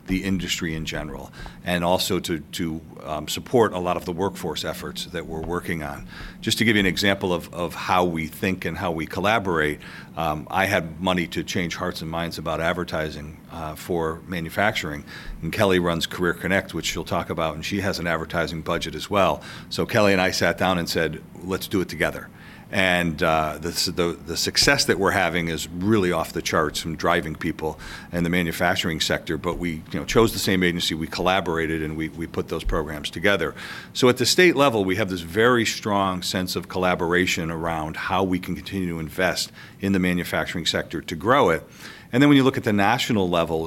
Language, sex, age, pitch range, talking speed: English, male, 40-59, 80-95 Hz, 210 wpm